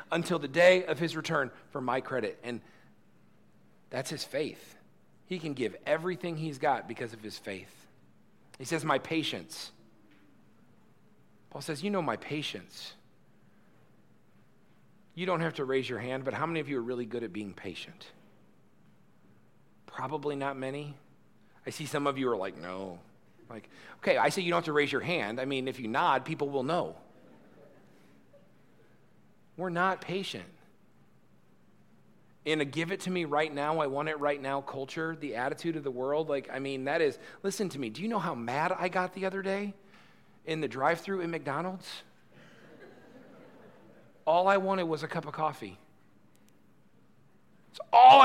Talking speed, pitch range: 170 wpm, 135-185 Hz